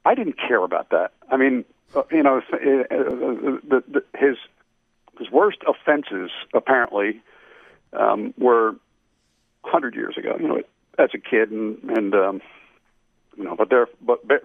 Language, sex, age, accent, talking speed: English, male, 50-69, American, 135 wpm